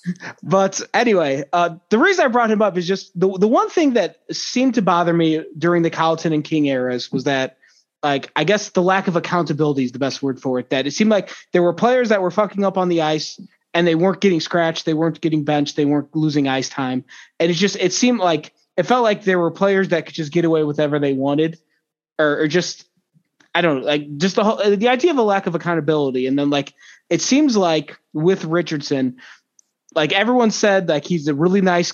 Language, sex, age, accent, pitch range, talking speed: English, male, 20-39, American, 150-190 Hz, 230 wpm